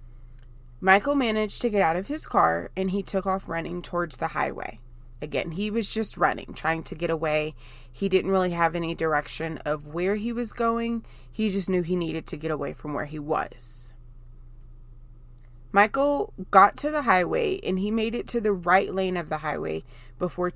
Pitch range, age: 120-190 Hz, 20-39